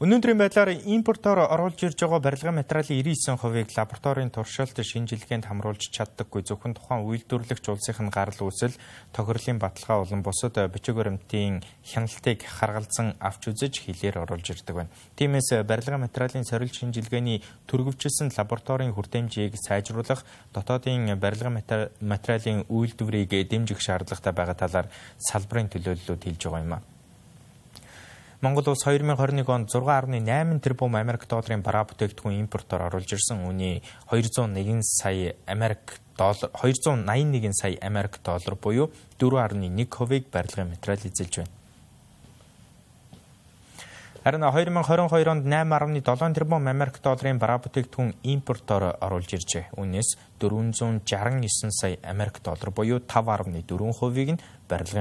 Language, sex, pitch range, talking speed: English, male, 100-130 Hz, 105 wpm